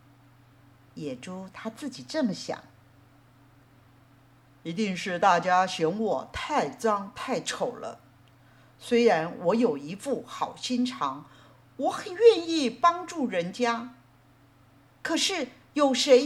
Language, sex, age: Chinese, female, 50-69